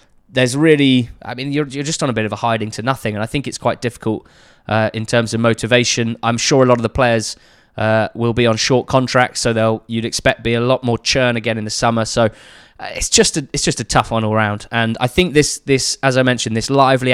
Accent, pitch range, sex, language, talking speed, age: British, 115-135 Hz, male, English, 260 wpm, 20-39